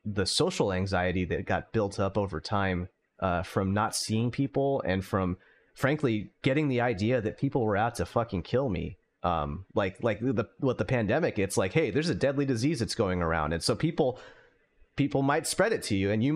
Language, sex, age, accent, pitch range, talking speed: English, male, 30-49, American, 95-125 Hz, 205 wpm